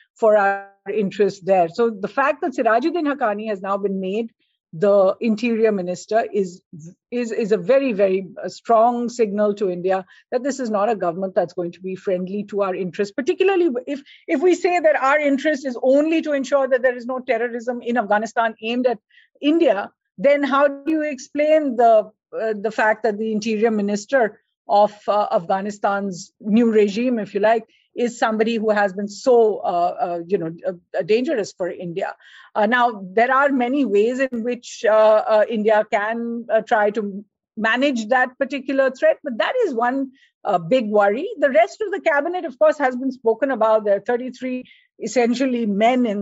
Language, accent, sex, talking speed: English, Indian, female, 185 wpm